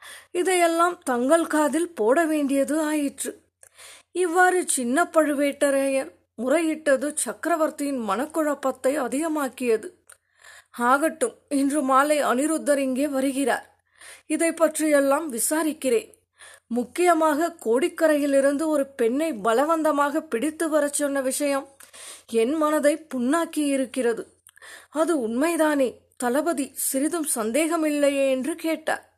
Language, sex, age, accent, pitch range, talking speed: Tamil, female, 20-39, native, 275-320 Hz, 90 wpm